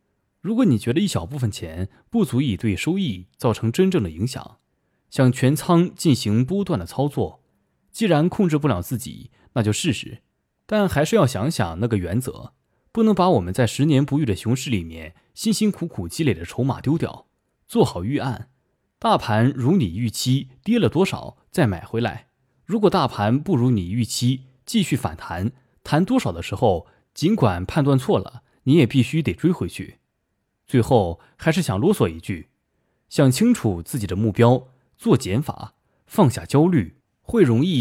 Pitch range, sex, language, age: 110-160 Hz, male, Chinese, 20-39